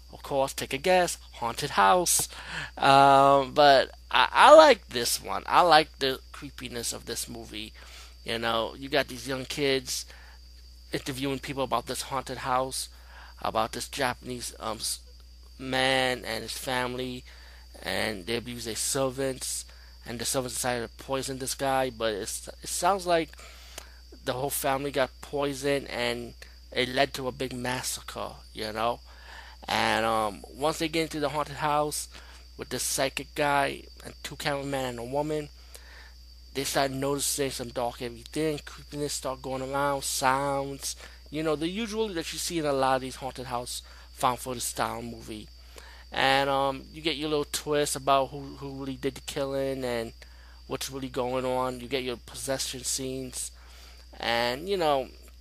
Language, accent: English, American